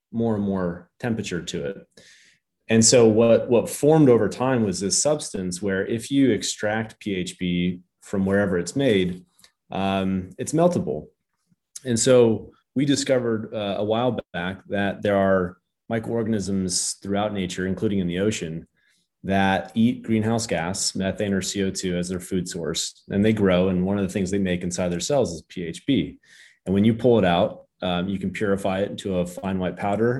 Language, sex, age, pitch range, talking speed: English, male, 30-49, 90-115 Hz, 175 wpm